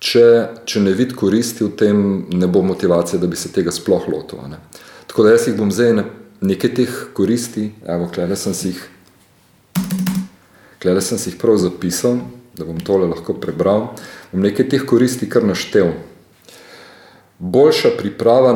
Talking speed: 155 wpm